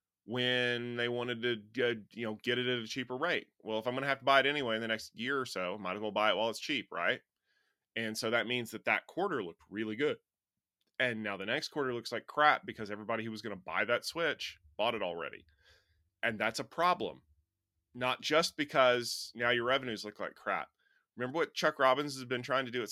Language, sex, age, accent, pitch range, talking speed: English, male, 20-39, American, 100-125 Hz, 240 wpm